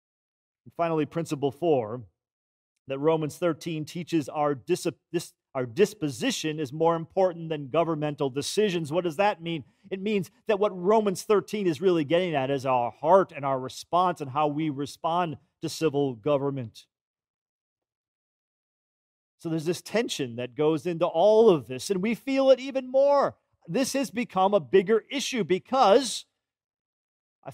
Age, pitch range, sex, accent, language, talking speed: 40-59, 150-200 Hz, male, American, English, 155 wpm